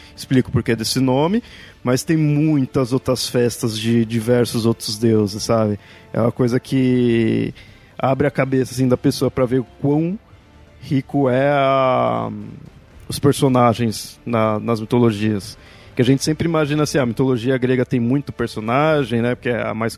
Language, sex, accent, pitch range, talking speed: Portuguese, male, Brazilian, 120-145 Hz, 160 wpm